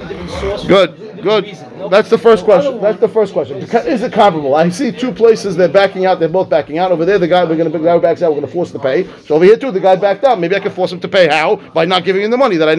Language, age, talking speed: English, 40-59, 295 wpm